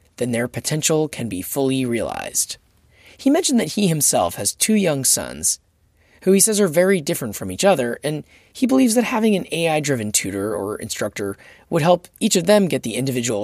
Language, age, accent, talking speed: English, 20-39, American, 190 wpm